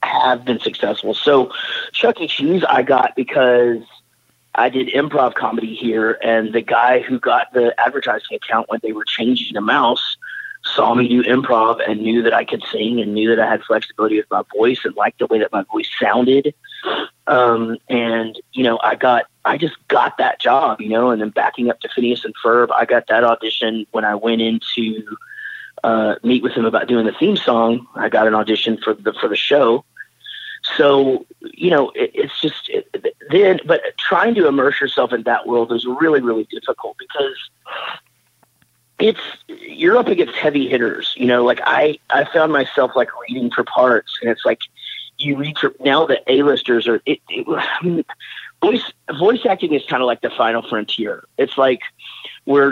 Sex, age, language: male, 30-49, English